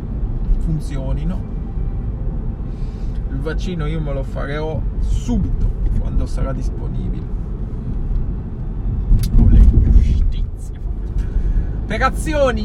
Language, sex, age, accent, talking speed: Italian, male, 20-39, native, 60 wpm